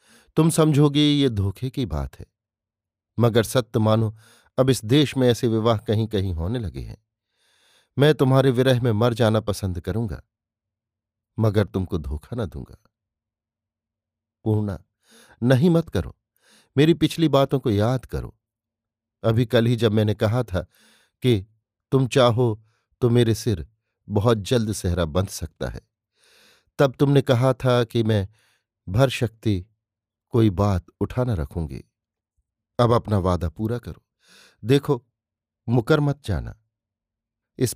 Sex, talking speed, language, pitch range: male, 135 wpm, Hindi, 100-120 Hz